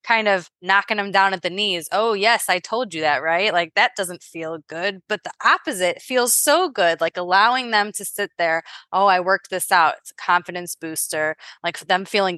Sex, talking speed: female, 215 wpm